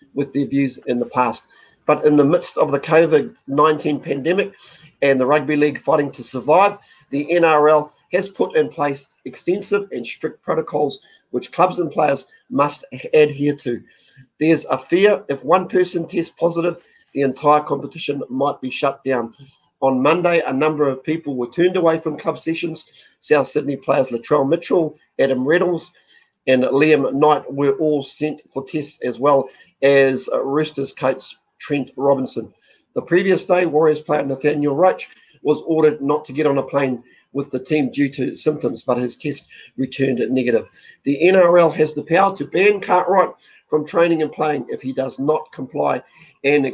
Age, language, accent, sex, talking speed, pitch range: 40-59, English, Australian, male, 170 wpm, 140-165 Hz